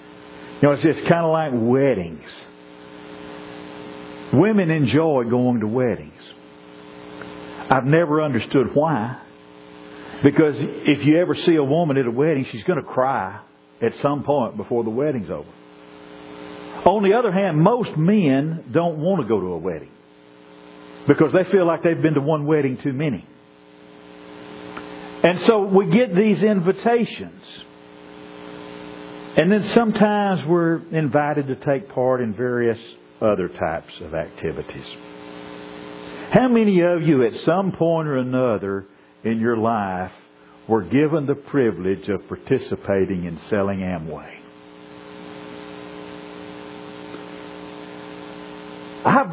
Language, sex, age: English, male, 50-69